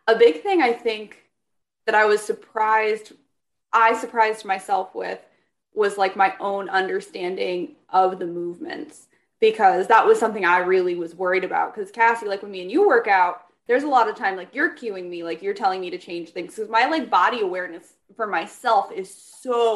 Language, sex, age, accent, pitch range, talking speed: English, female, 20-39, American, 185-295 Hz, 195 wpm